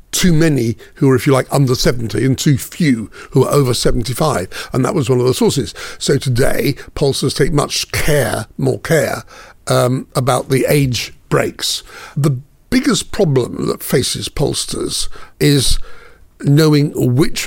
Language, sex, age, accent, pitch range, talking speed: English, male, 60-79, British, 125-145 Hz, 155 wpm